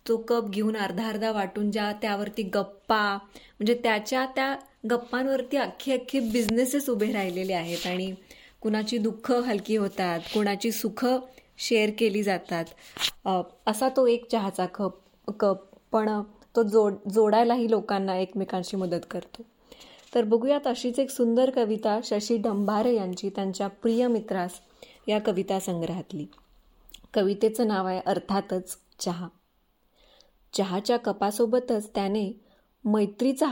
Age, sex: 20-39, female